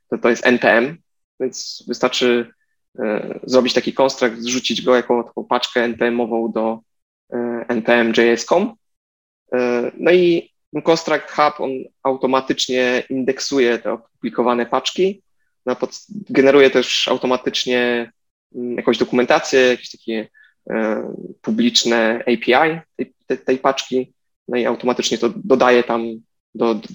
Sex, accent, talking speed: male, native, 120 wpm